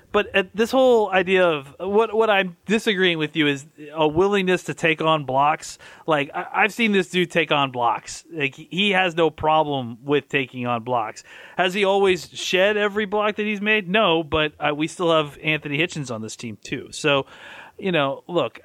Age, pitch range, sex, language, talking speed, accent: 30-49, 130-170 Hz, male, English, 200 wpm, American